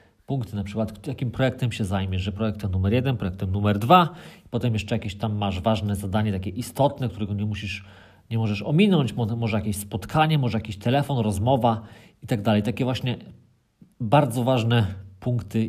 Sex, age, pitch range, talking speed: male, 40-59, 105-125 Hz, 170 wpm